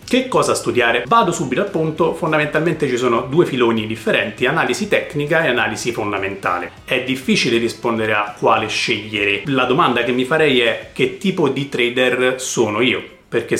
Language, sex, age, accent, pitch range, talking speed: Italian, male, 30-49, native, 110-135 Hz, 165 wpm